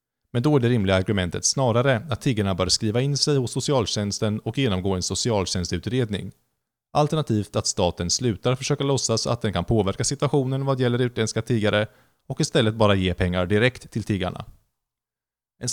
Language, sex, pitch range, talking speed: Swedish, male, 95-130 Hz, 165 wpm